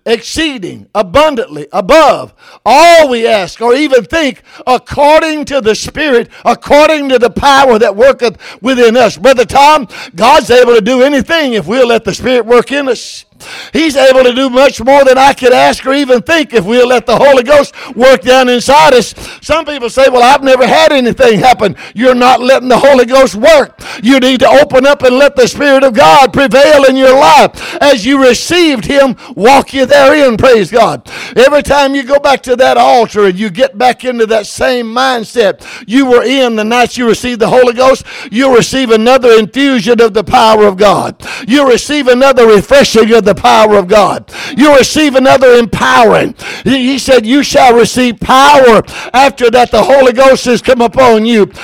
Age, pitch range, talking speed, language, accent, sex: 60-79, 240-280 Hz, 190 wpm, English, American, male